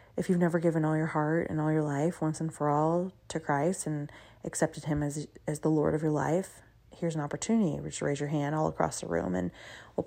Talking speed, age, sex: 240 wpm, 20-39, female